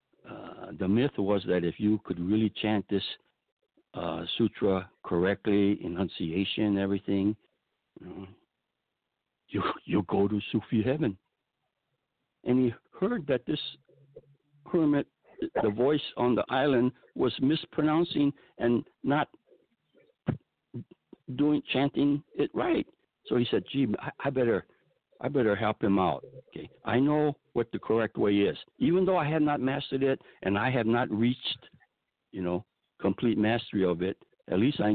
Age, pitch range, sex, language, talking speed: 60-79, 100-145 Hz, male, English, 145 wpm